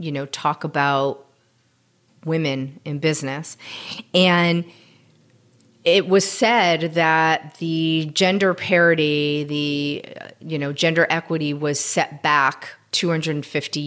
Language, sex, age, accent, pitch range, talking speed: English, female, 40-59, American, 145-170 Hz, 105 wpm